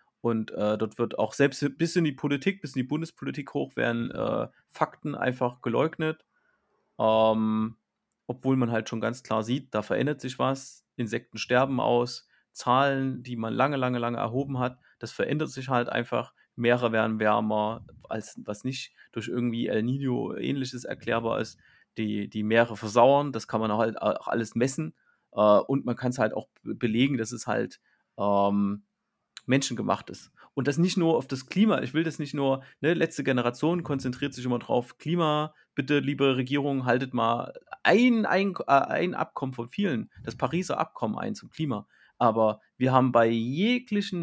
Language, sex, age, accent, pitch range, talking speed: German, male, 30-49, German, 115-145 Hz, 175 wpm